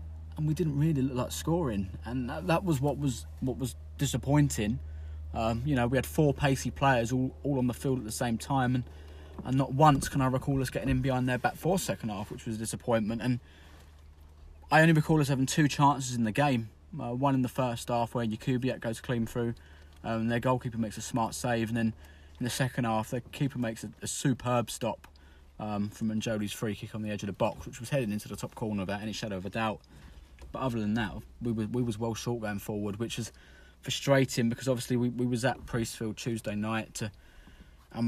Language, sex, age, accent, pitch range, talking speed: English, male, 20-39, British, 105-130 Hz, 230 wpm